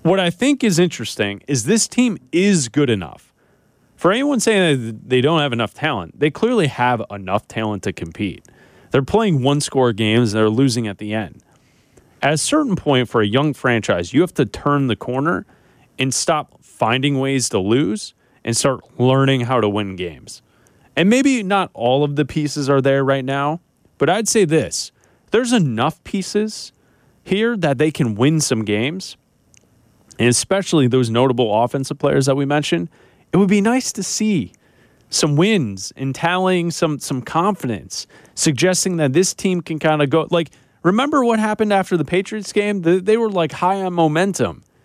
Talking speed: 180 wpm